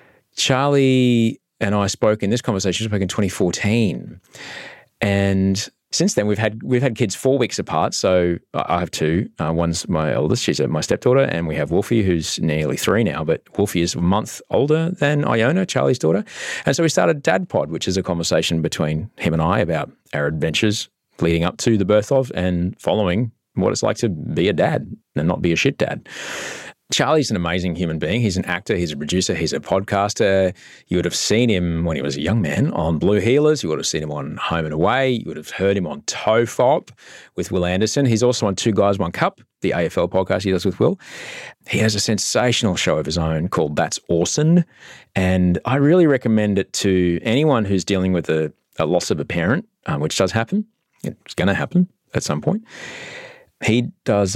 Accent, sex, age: Australian, male, 30-49